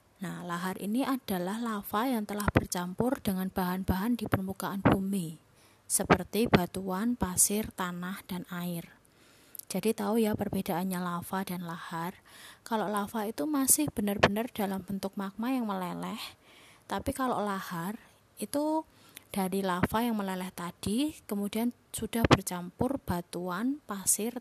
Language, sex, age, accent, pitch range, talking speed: Indonesian, female, 20-39, native, 185-225 Hz, 125 wpm